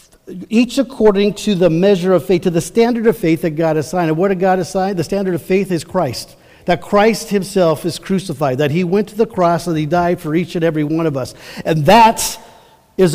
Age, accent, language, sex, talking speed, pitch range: 50-69, American, English, male, 230 wpm, 175-235 Hz